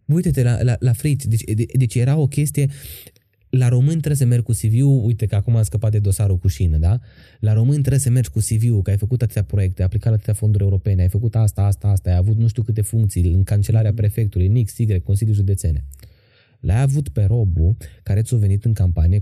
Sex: male